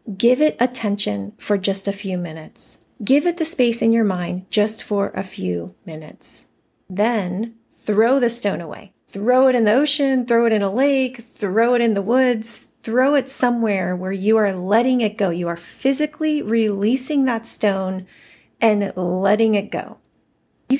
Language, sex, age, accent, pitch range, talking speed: English, female, 30-49, American, 200-255 Hz, 175 wpm